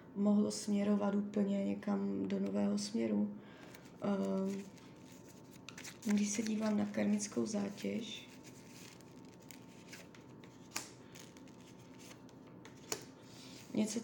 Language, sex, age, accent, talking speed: Czech, female, 20-39, native, 60 wpm